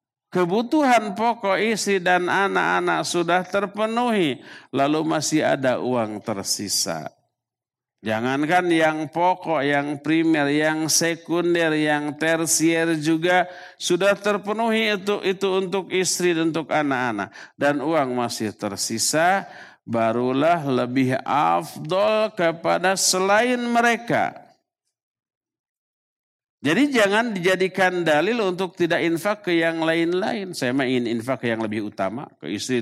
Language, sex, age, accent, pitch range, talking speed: Indonesian, male, 50-69, native, 155-210 Hz, 110 wpm